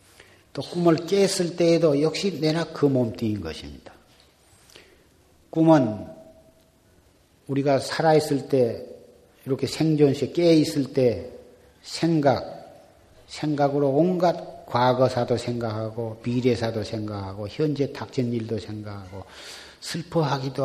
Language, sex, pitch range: Korean, male, 110-155 Hz